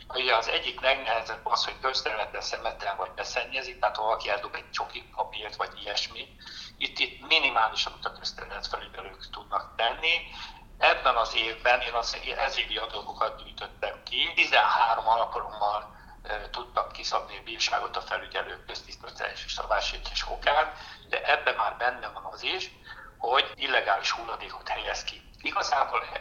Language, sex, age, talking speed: Hungarian, male, 60-79, 140 wpm